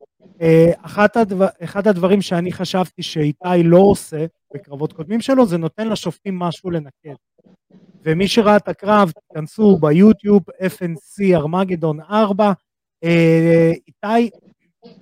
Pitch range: 160-205 Hz